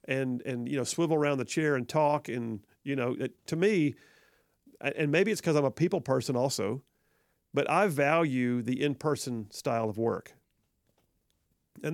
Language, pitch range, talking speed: English, 125-155 Hz, 165 wpm